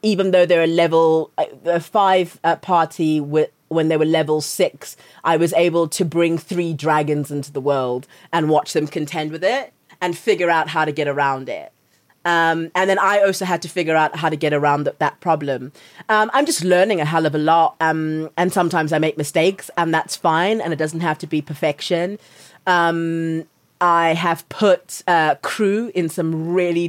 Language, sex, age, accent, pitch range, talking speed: English, female, 30-49, British, 155-180 Hz, 200 wpm